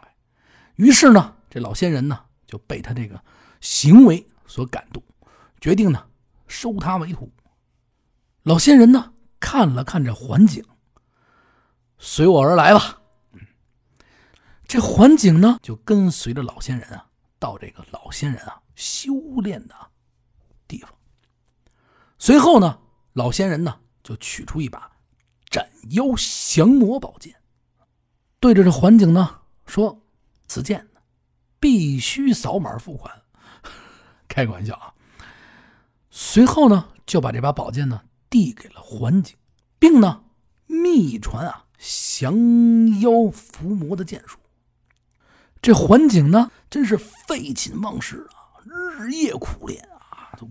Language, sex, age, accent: Chinese, male, 50-69, native